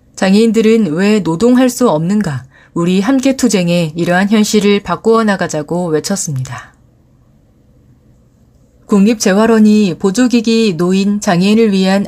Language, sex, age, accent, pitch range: Korean, female, 30-49, native, 175-225 Hz